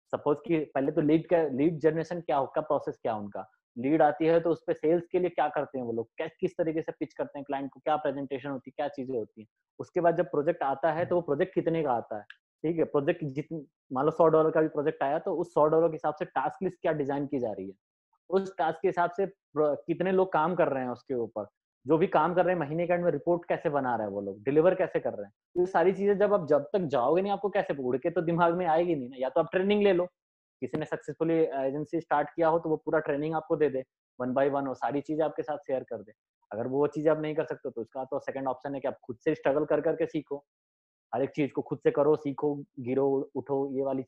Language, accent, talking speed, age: Hindi, native, 260 wpm, 20-39